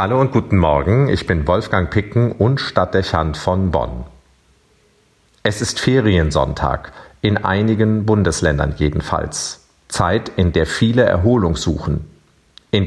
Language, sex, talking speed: German, male, 120 wpm